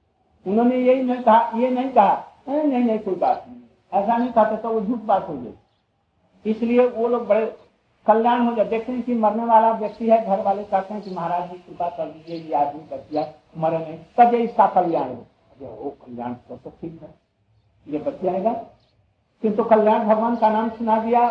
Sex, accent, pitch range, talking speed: male, native, 160-235 Hz, 120 wpm